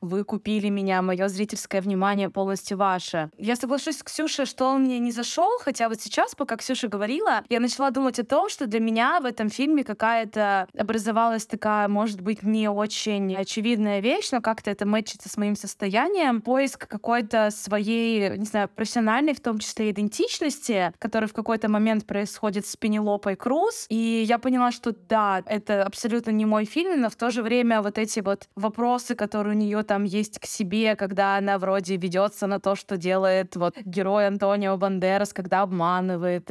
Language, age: Russian, 20-39